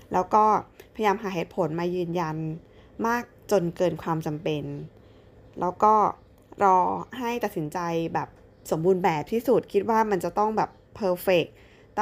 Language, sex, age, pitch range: Thai, female, 20-39, 165-205 Hz